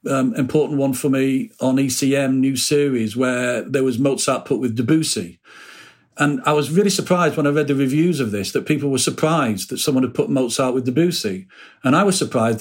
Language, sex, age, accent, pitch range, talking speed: English, male, 50-69, British, 130-160 Hz, 205 wpm